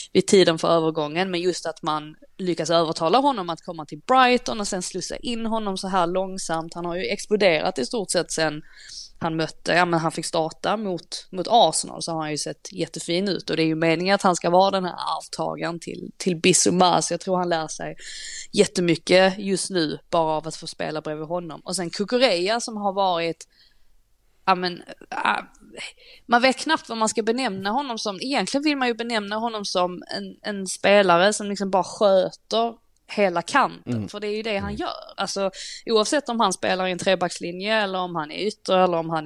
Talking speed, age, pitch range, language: 205 wpm, 20-39, 170-210 Hz, Swedish